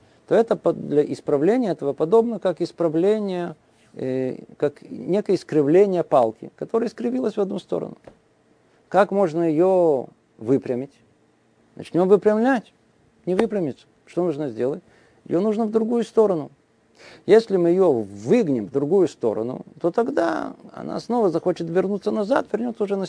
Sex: male